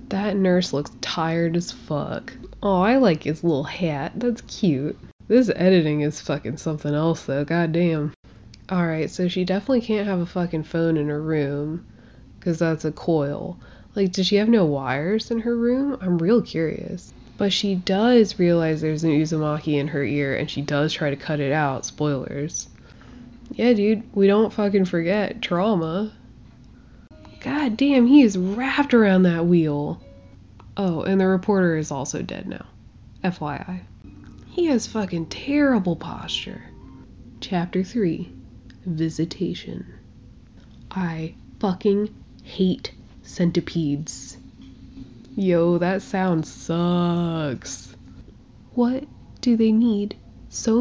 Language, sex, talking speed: English, female, 135 wpm